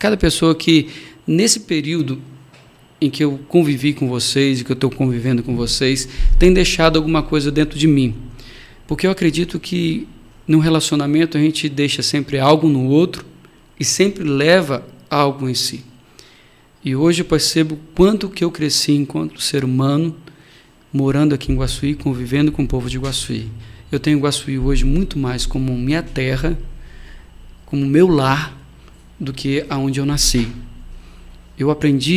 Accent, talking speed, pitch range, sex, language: Brazilian, 155 wpm, 130-155 Hz, male, Portuguese